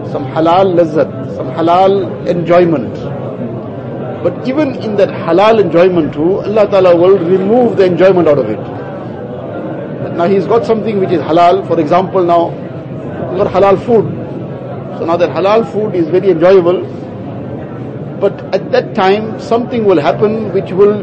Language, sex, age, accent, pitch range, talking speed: English, male, 50-69, Indian, 165-205 Hz, 150 wpm